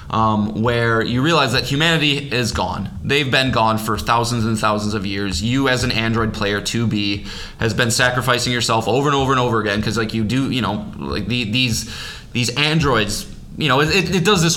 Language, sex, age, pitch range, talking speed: English, male, 20-39, 110-140 Hz, 205 wpm